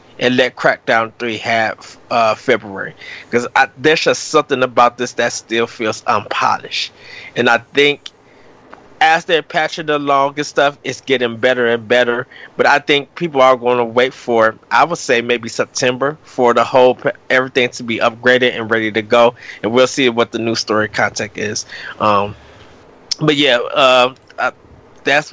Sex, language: male, English